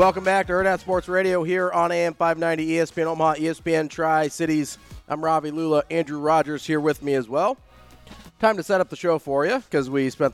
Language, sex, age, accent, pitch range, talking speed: English, male, 30-49, American, 105-145 Hz, 205 wpm